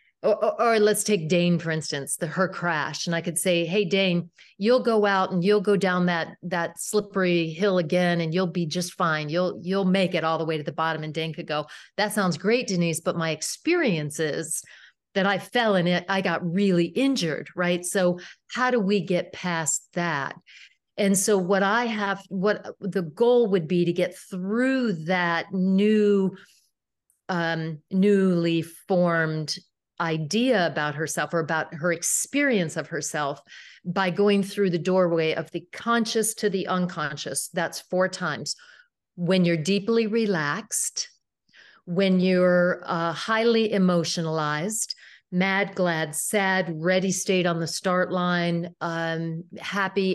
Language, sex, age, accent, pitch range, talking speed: English, female, 40-59, American, 165-200 Hz, 160 wpm